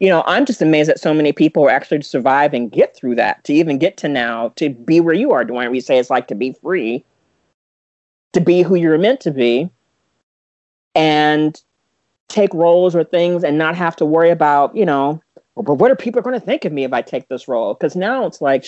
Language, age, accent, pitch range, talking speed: English, 40-59, American, 135-180 Hz, 225 wpm